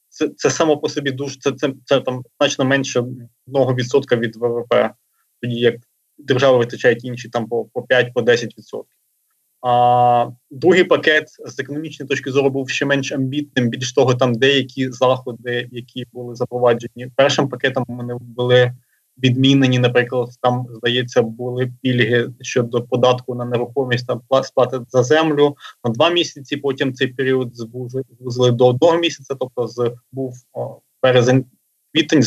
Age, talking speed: 20-39, 140 wpm